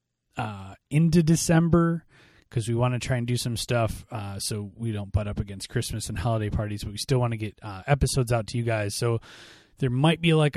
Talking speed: 225 wpm